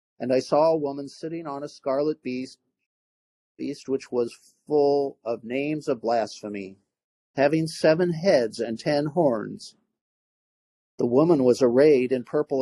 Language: English